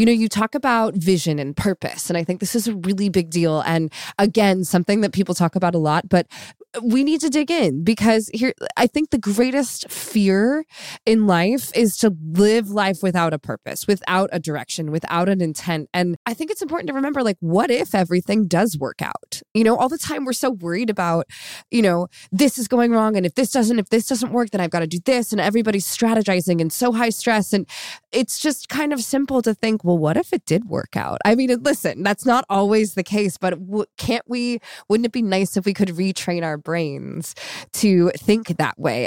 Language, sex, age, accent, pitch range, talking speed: English, female, 20-39, American, 170-225 Hz, 220 wpm